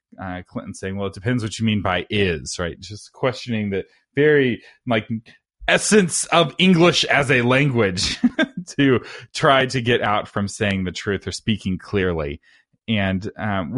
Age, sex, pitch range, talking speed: 30-49, male, 100-135 Hz, 160 wpm